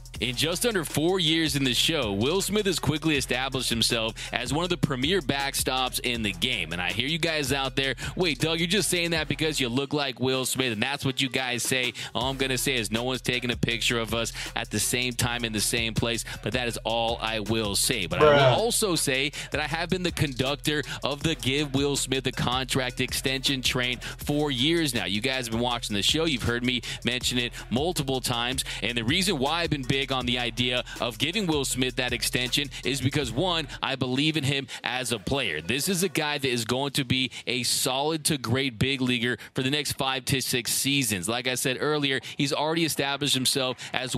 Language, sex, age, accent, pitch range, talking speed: English, male, 20-39, American, 125-150 Hz, 230 wpm